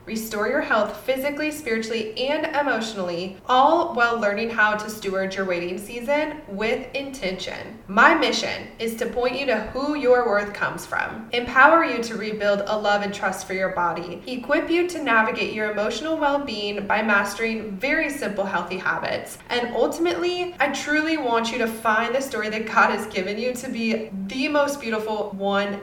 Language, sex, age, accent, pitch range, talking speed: English, female, 20-39, American, 205-260 Hz, 175 wpm